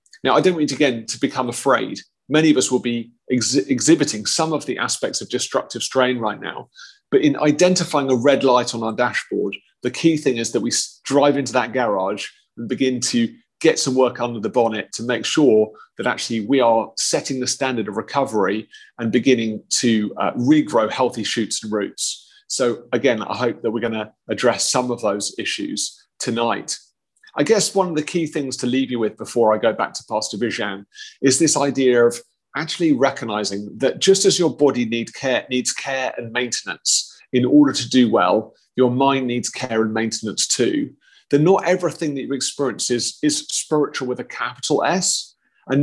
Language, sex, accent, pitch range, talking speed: English, male, British, 120-145 Hz, 195 wpm